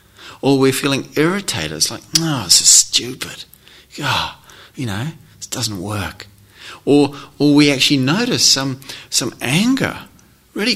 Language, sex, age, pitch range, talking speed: English, male, 30-49, 110-150 Hz, 140 wpm